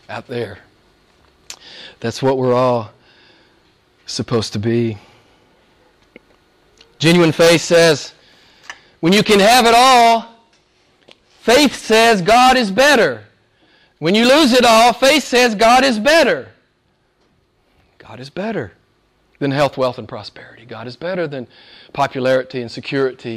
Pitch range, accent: 120-165 Hz, American